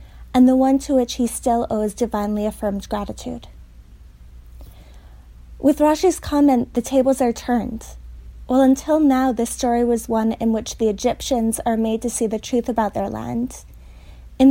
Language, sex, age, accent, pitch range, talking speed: English, female, 20-39, American, 210-255 Hz, 165 wpm